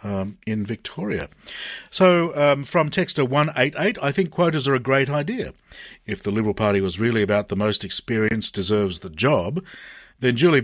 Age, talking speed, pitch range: 50-69, 170 wpm, 100-135 Hz